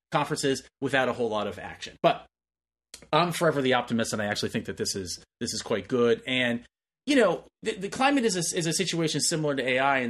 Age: 30-49